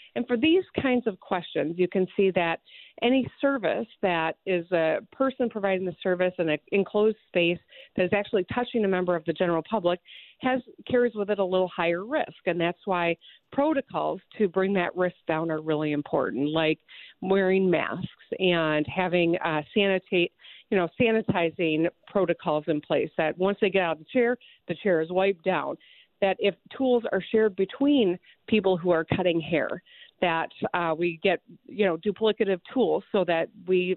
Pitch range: 170-215 Hz